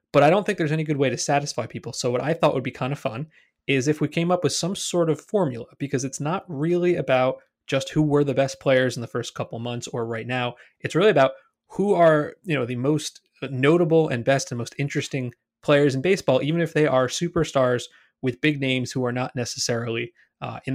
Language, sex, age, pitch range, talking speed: English, male, 20-39, 130-170 Hz, 235 wpm